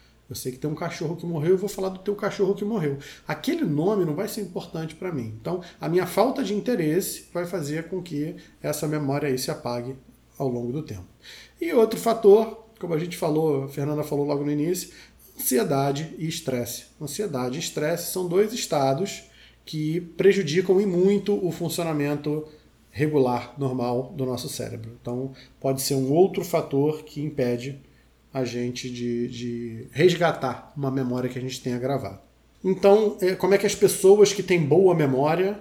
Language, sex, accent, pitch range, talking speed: Portuguese, male, Brazilian, 130-180 Hz, 180 wpm